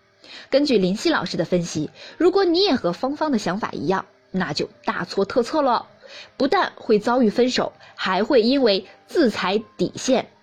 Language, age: Chinese, 20-39